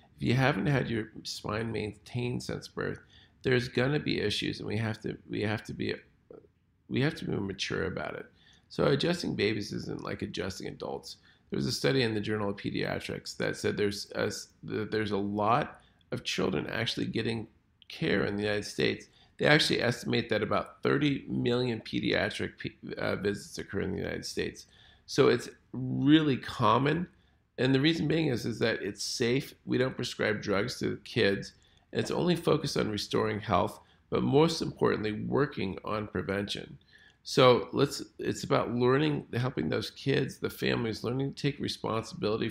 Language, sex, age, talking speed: English, male, 40-59, 175 wpm